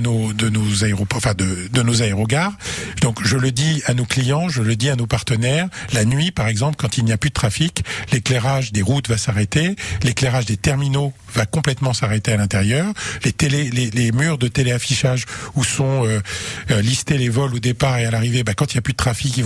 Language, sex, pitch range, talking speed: French, male, 115-140 Hz, 225 wpm